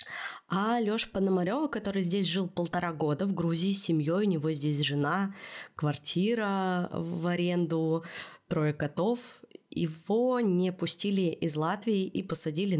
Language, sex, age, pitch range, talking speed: Russian, female, 20-39, 160-210 Hz, 130 wpm